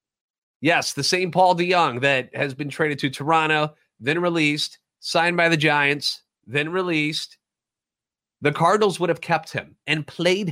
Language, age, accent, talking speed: English, 30-49, American, 155 wpm